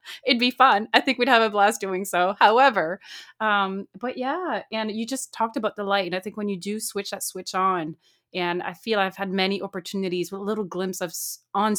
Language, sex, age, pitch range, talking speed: English, female, 30-49, 175-205 Hz, 230 wpm